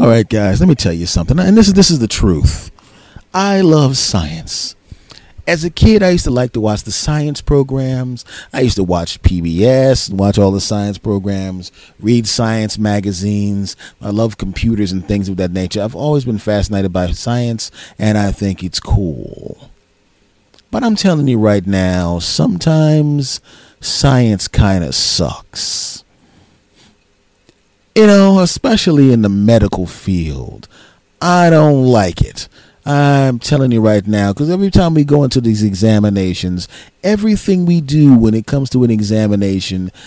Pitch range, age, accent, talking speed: 100-130 Hz, 30-49, American, 160 wpm